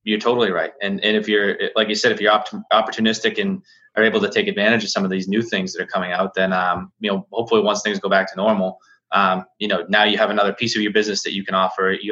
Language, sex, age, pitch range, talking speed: English, male, 20-39, 100-115 Hz, 280 wpm